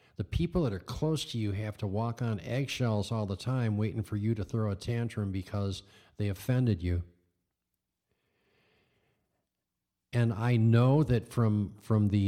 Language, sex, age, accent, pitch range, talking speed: English, male, 50-69, American, 100-120 Hz, 160 wpm